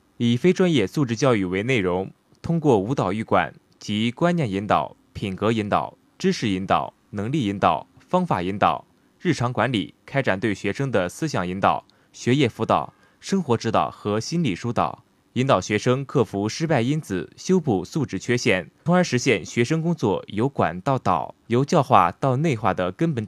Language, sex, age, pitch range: Chinese, male, 20-39, 100-150 Hz